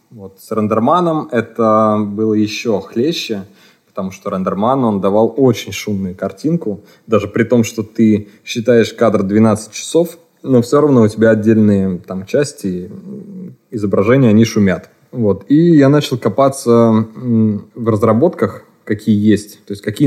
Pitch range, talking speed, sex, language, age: 100-125 Hz, 130 wpm, male, Russian, 20-39